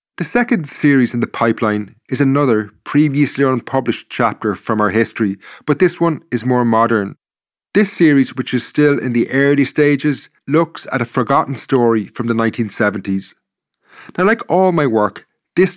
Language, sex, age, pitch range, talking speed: English, male, 30-49, 115-150 Hz, 165 wpm